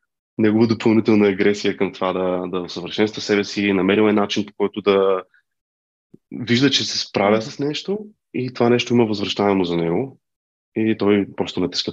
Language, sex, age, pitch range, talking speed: Bulgarian, male, 30-49, 100-115 Hz, 170 wpm